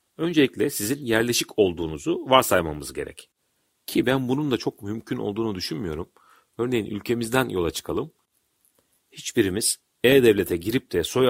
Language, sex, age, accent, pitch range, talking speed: Turkish, male, 40-59, native, 95-120 Hz, 120 wpm